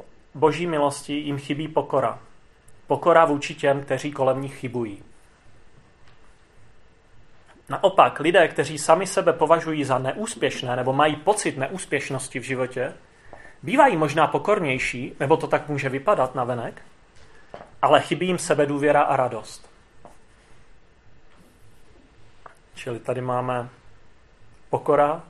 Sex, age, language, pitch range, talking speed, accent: male, 30-49, Czech, 125-145 Hz, 110 wpm, native